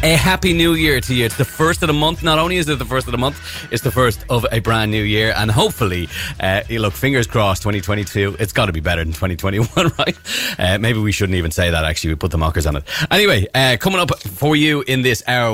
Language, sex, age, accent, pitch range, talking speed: English, male, 30-49, Irish, 95-125 Hz, 265 wpm